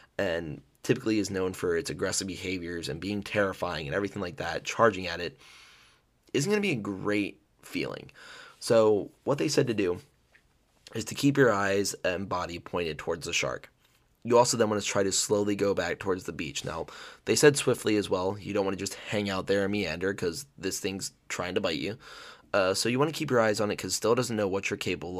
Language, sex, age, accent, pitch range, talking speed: English, male, 20-39, American, 95-105 Hz, 230 wpm